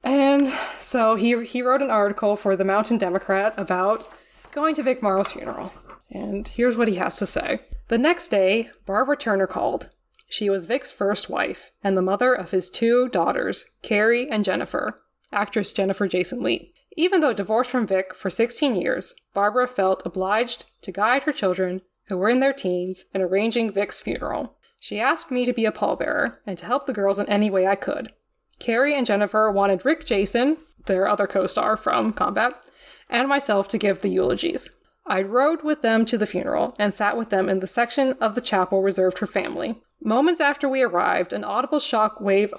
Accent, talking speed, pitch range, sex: American, 190 wpm, 195-250 Hz, female